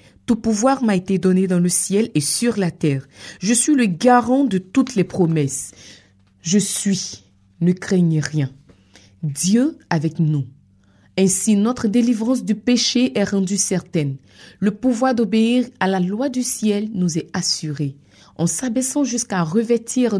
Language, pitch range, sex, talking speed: French, 175-225 Hz, female, 150 wpm